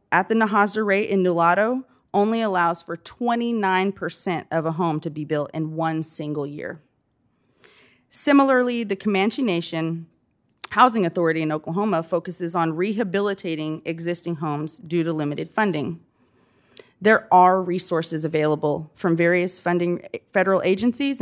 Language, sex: English, female